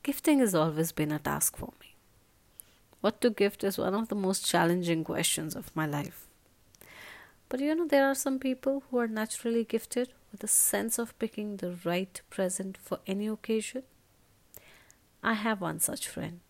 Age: 30-49